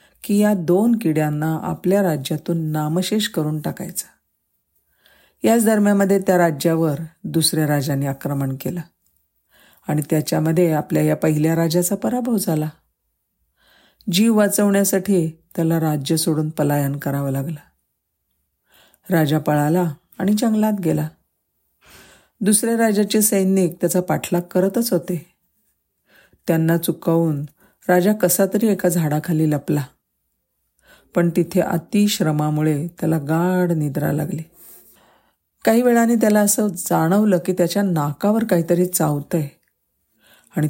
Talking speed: 105 wpm